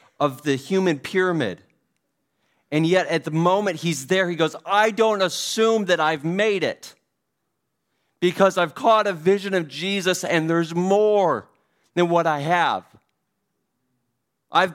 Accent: American